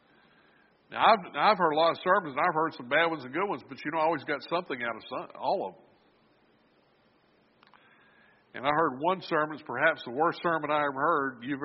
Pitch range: 135-165 Hz